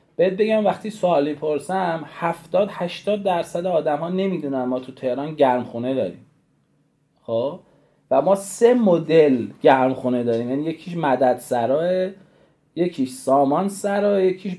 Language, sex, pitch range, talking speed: Persian, male, 135-190 Hz, 130 wpm